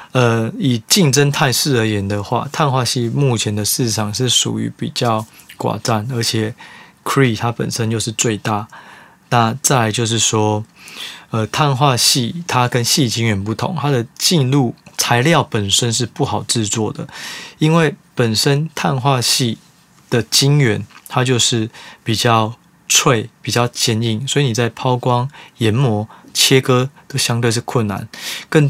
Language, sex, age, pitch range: Chinese, male, 20-39, 110-135 Hz